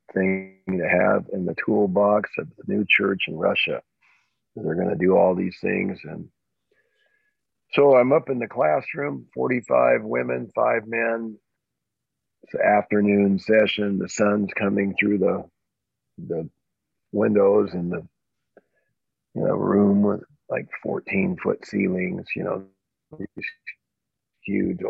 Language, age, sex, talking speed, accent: English, 50-69, male, 130 wpm, American